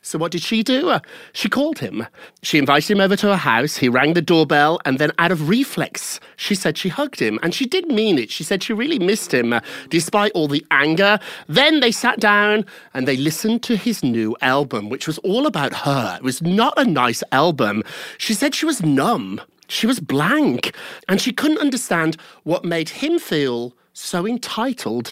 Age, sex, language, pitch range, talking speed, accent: 40-59, male, English, 140-225 Hz, 200 wpm, British